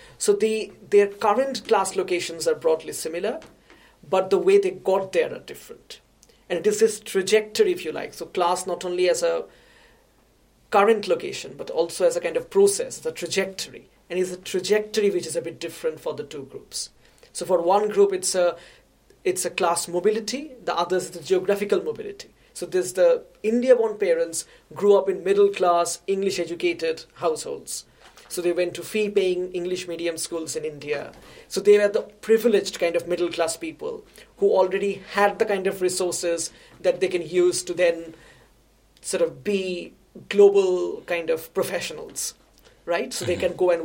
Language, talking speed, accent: English, 180 wpm, Indian